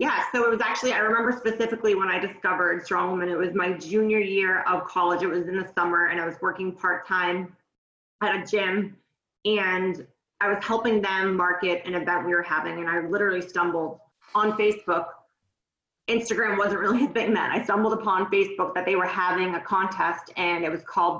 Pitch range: 180-215 Hz